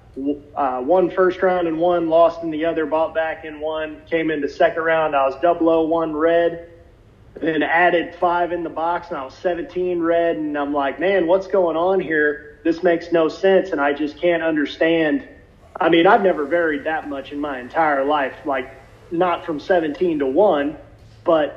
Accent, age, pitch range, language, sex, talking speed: American, 30-49, 145-180 Hz, English, male, 195 wpm